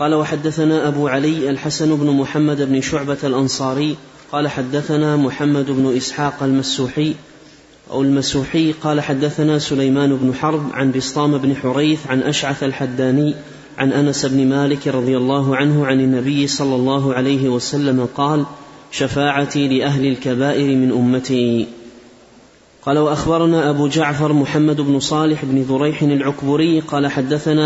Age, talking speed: 30-49, 130 wpm